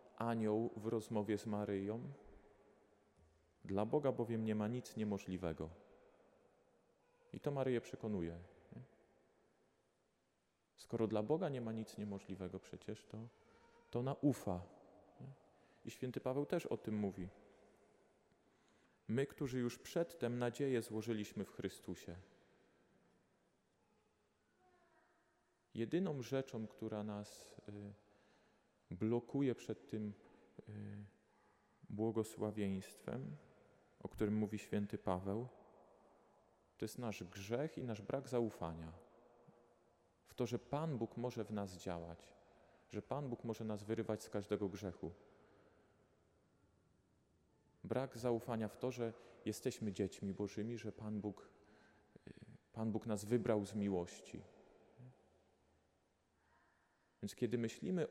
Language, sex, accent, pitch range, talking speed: Polish, male, native, 100-120 Hz, 105 wpm